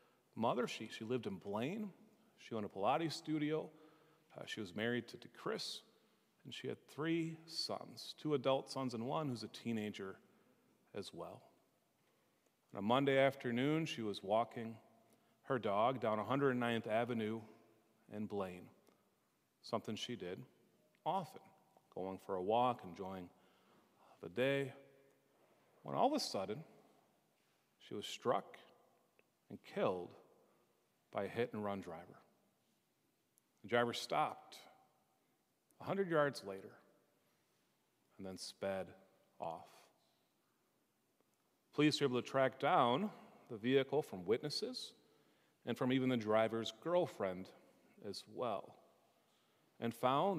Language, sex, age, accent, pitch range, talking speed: English, male, 40-59, American, 110-140 Hz, 120 wpm